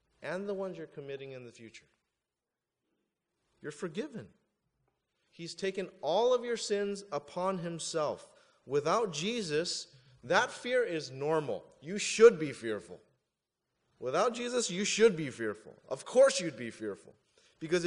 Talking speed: 135 wpm